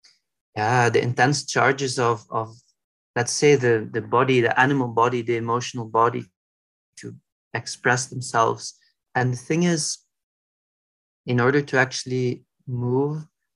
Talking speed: 130 wpm